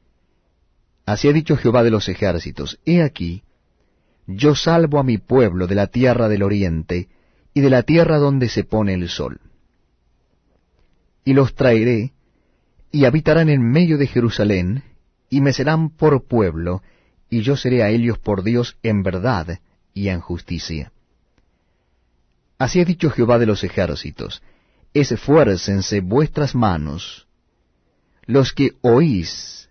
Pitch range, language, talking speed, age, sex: 90-130 Hz, Spanish, 135 wpm, 30-49, male